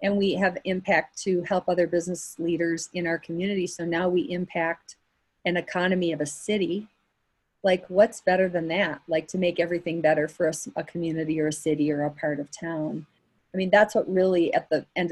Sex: female